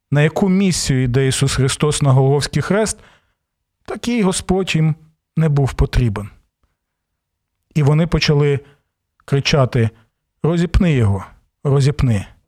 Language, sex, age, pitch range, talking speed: Ukrainian, male, 40-59, 100-145 Hz, 105 wpm